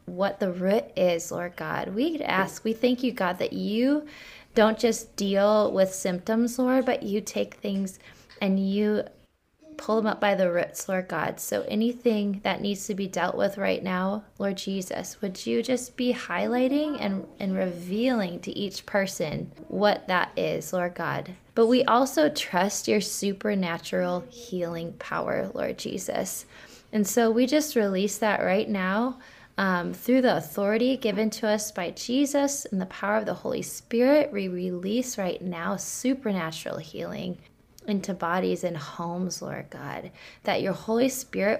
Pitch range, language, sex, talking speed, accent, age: 190-235 Hz, English, female, 160 wpm, American, 20-39